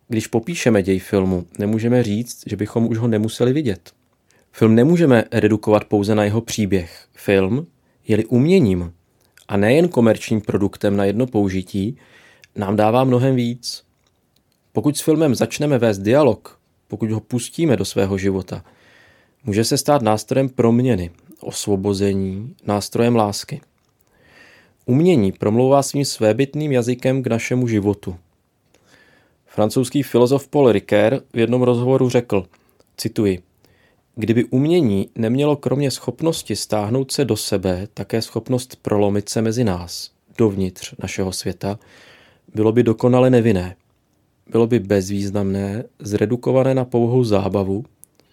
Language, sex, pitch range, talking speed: Czech, male, 100-125 Hz, 125 wpm